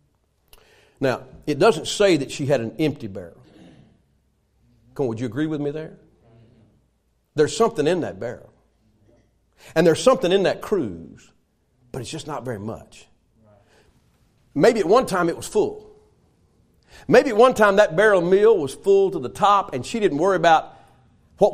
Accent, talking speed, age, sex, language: American, 165 wpm, 50-69, male, English